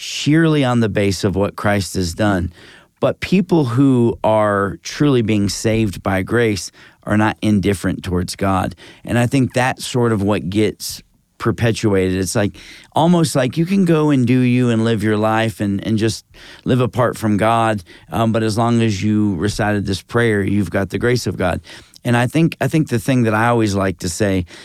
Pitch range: 100-120 Hz